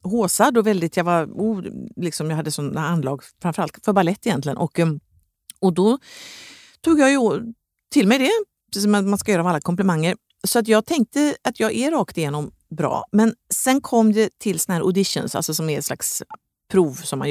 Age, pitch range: 50-69, 155-220 Hz